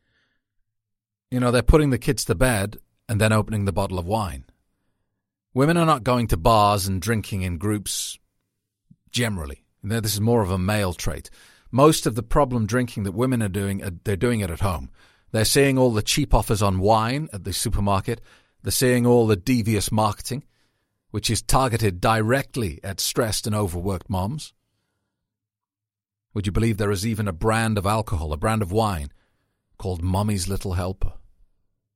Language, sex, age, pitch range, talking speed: English, male, 40-59, 100-120 Hz, 170 wpm